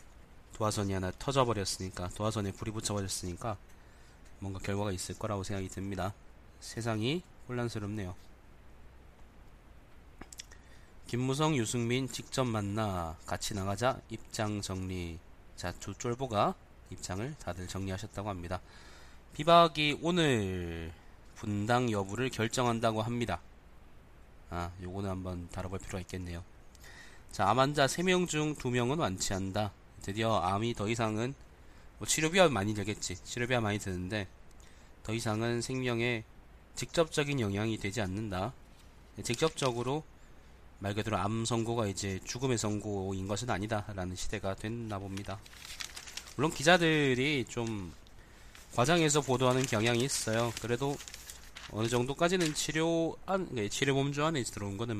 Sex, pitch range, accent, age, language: male, 90-120 Hz, native, 20-39, Korean